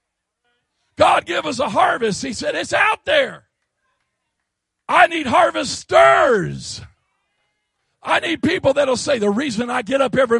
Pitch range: 195-280 Hz